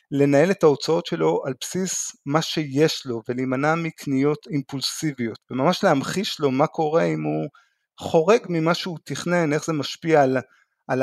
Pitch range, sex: 130-160 Hz, male